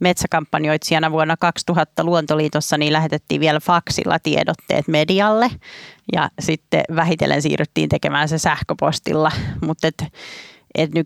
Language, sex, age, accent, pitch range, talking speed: Finnish, female, 30-49, native, 150-165 Hz, 105 wpm